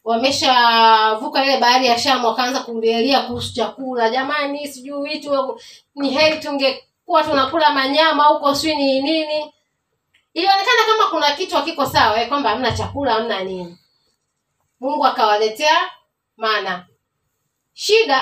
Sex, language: female, Swahili